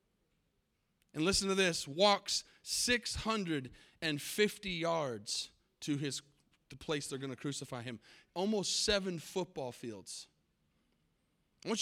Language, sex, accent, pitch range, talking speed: English, male, American, 150-205 Hz, 110 wpm